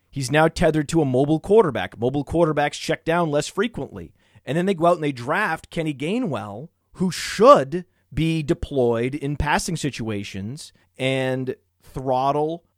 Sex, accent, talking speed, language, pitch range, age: male, American, 150 wpm, English, 115-155 Hz, 30-49